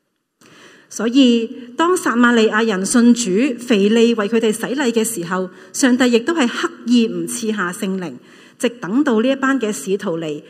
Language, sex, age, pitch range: Chinese, female, 30-49, 195-250 Hz